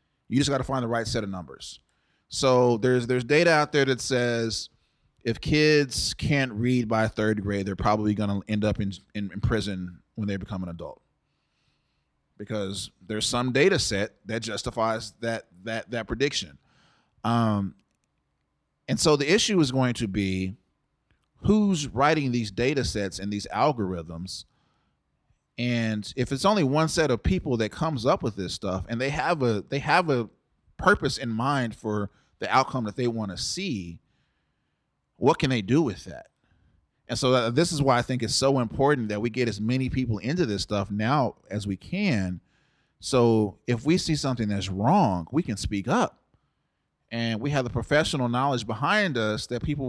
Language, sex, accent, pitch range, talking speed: English, male, American, 105-135 Hz, 180 wpm